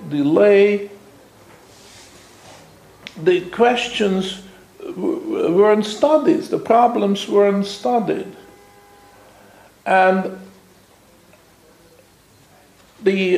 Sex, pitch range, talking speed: male, 175-255 Hz, 50 wpm